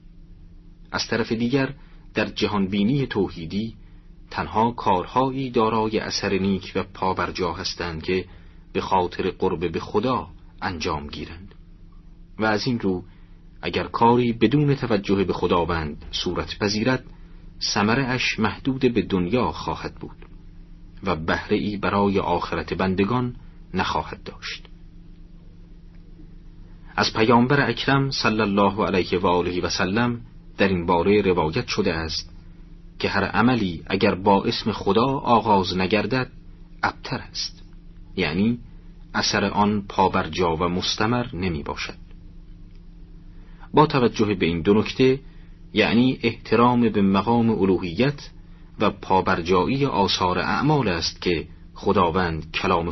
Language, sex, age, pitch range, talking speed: Persian, male, 40-59, 85-115 Hz, 120 wpm